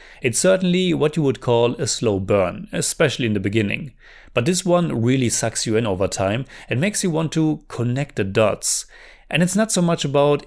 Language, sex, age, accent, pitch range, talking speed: English, male, 30-49, German, 115-155 Hz, 205 wpm